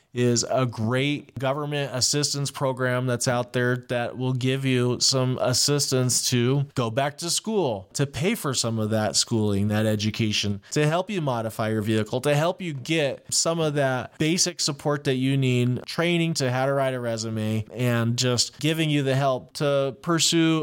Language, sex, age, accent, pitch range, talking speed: English, male, 20-39, American, 125-150 Hz, 180 wpm